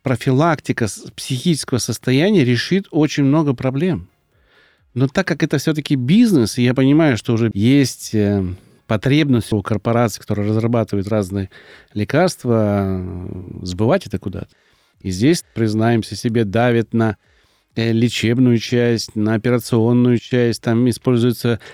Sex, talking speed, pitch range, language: male, 115 wpm, 110-140 Hz, Russian